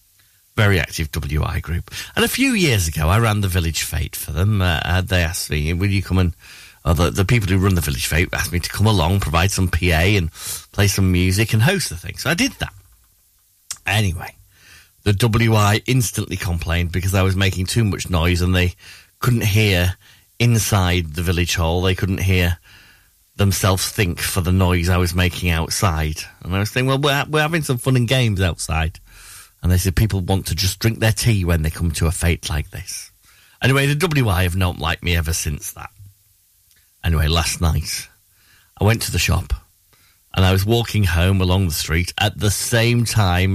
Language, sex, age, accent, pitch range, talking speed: English, male, 40-59, British, 90-105 Hz, 200 wpm